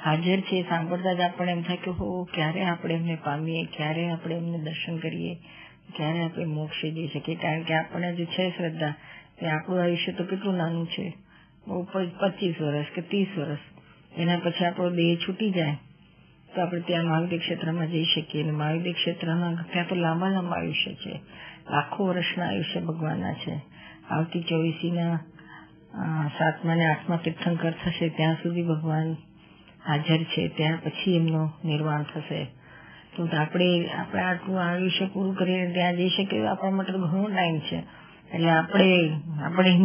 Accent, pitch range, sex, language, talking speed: native, 160-180 Hz, female, Gujarati, 115 wpm